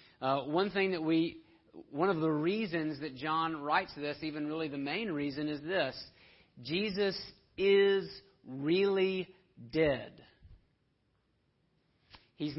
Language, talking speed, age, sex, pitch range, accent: English, 120 wpm, 40-59, male, 150-180 Hz, American